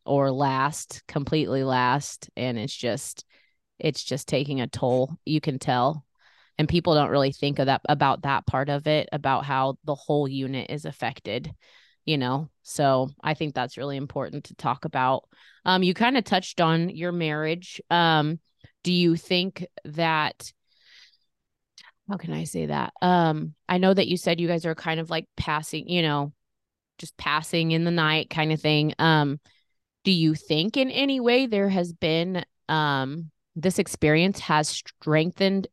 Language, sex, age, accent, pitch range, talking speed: English, female, 20-39, American, 150-175 Hz, 170 wpm